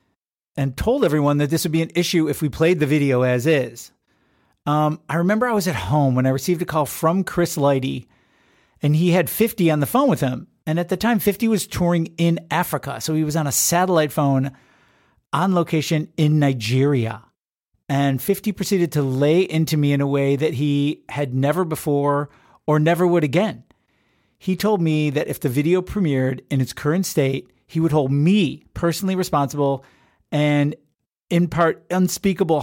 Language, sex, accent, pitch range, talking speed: English, male, American, 140-175 Hz, 185 wpm